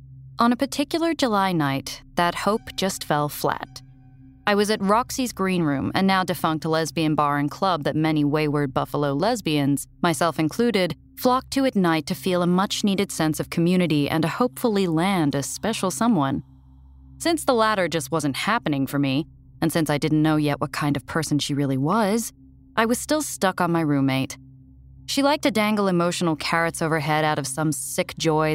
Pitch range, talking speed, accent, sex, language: 145-215 Hz, 185 wpm, American, female, English